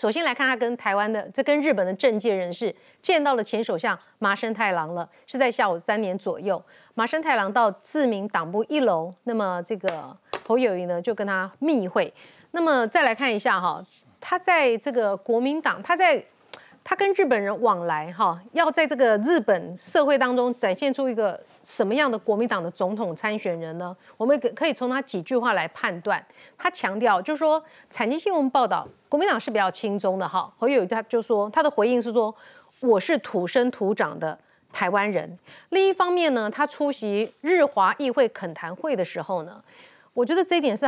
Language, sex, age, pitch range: Chinese, female, 30-49, 205-285 Hz